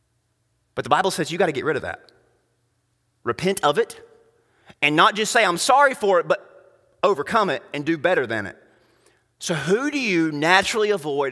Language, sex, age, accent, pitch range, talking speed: English, male, 30-49, American, 125-200 Hz, 190 wpm